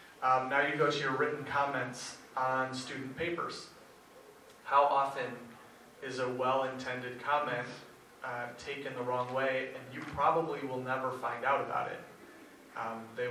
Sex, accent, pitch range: male, American, 120-150 Hz